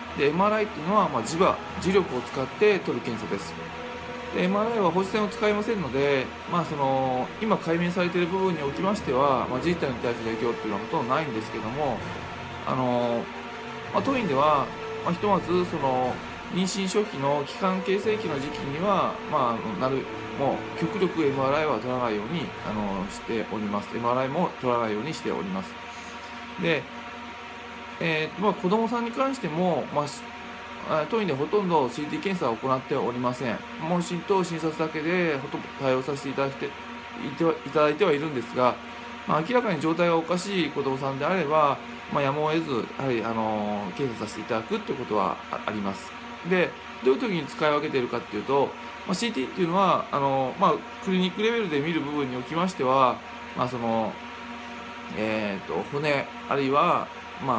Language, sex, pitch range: Japanese, male, 130-190 Hz